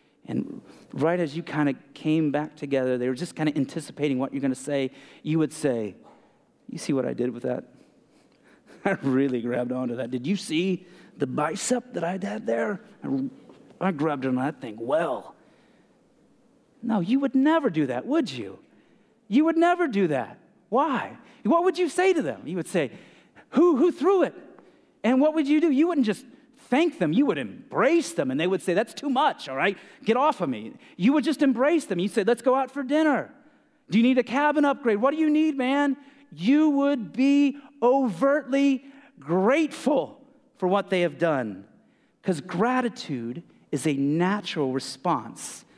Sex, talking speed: male, 190 wpm